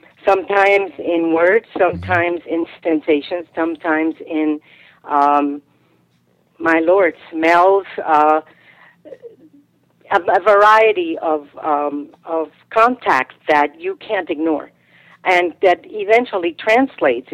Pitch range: 155-185 Hz